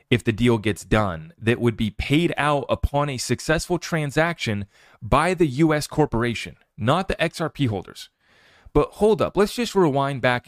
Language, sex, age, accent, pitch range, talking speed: English, male, 30-49, American, 120-180 Hz, 165 wpm